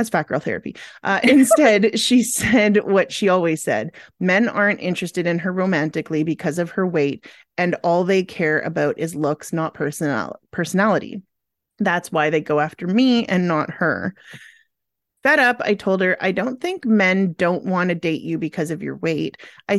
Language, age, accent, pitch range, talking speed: English, 30-49, American, 165-205 Hz, 180 wpm